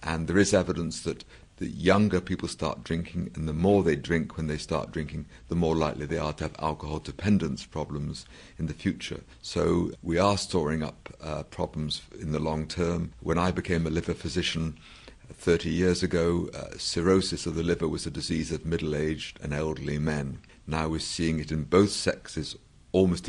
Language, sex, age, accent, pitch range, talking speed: English, male, 50-69, British, 75-90 Hz, 190 wpm